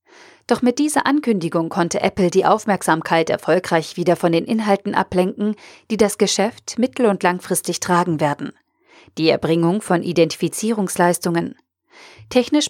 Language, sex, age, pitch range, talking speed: German, female, 40-59, 170-215 Hz, 130 wpm